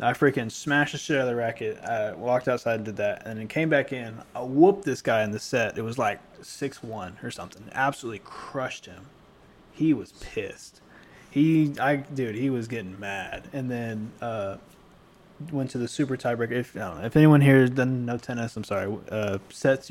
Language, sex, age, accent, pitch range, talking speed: English, male, 20-39, American, 110-135 Hz, 205 wpm